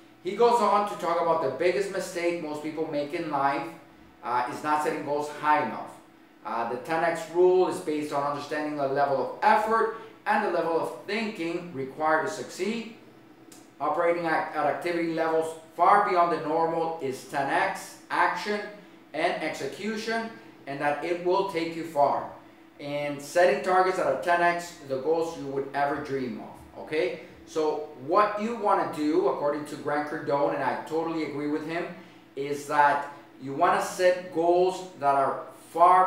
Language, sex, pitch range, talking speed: English, male, 145-180 Hz, 170 wpm